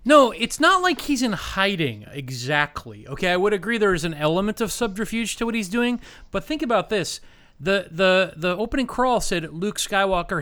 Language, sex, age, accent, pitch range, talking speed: English, male, 30-49, American, 150-215 Hz, 195 wpm